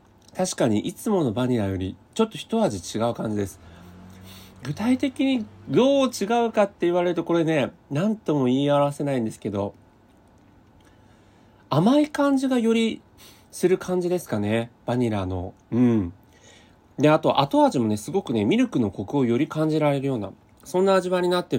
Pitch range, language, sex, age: 110-180 Hz, Japanese, male, 40-59